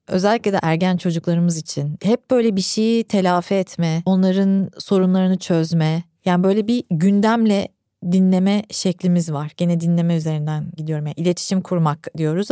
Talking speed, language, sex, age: 140 wpm, Turkish, female, 30-49